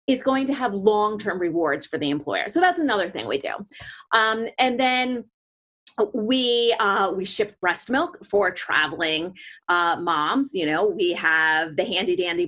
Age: 30-49